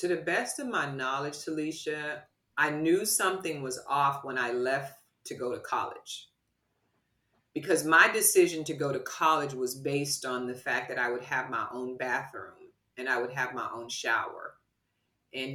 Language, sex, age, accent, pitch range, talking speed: English, female, 30-49, American, 130-195 Hz, 180 wpm